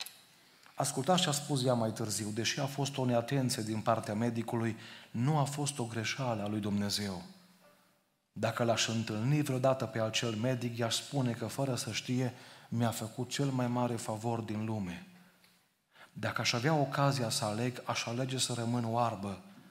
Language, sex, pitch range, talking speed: Romanian, male, 115-145 Hz, 165 wpm